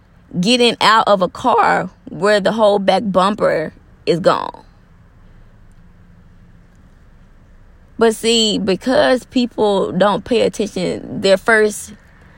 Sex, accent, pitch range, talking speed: female, American, 155-210 Hz, 100 wpm